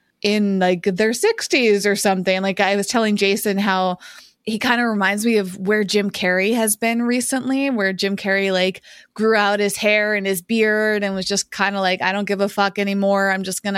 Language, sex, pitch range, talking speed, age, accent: English, female, 195-235 Hz, 220 wpm, 20-39, American